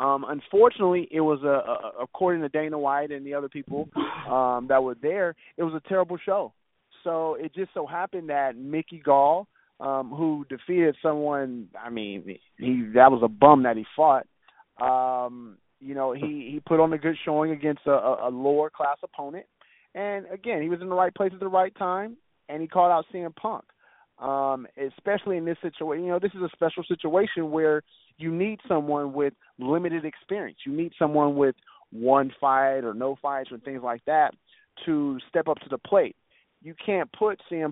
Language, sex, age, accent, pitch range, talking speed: English, male, 30-49, American, 140-175 Hz, 190 wpm